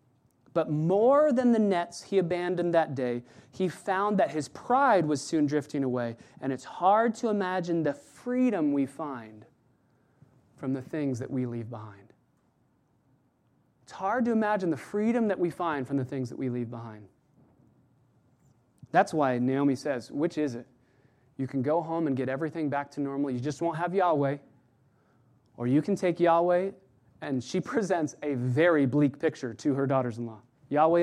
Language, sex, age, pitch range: English, male, 30-49, 130-165 Hz